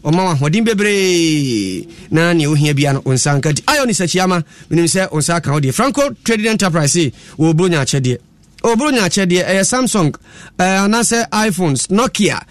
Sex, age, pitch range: male, 30-49, 155-210 Hz